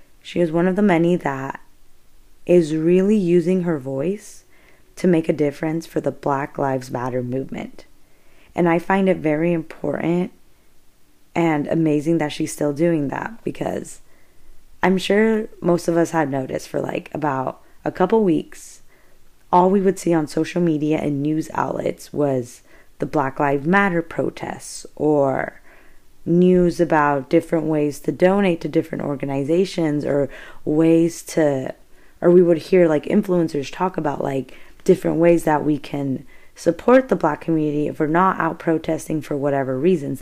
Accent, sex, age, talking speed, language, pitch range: American, female, 20-39, 155 wpm, English, 150-180 Hz